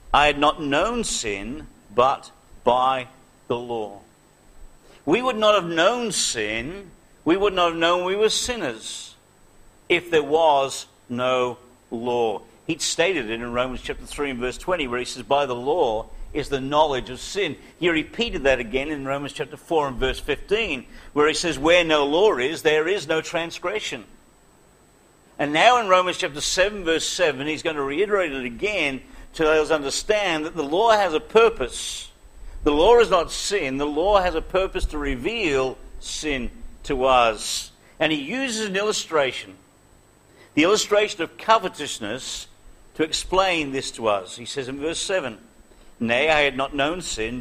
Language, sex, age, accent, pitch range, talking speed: English, male, 50-69, British, 130-190 Hz, 170 wpm